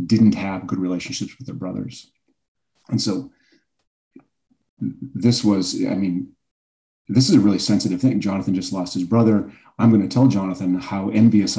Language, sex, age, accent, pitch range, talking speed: English, male, 40-59, American, 90-105 Hz, 155 wpm